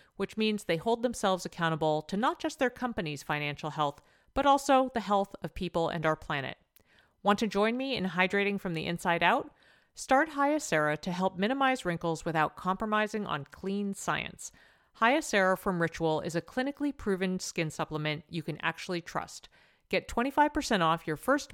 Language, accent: English, American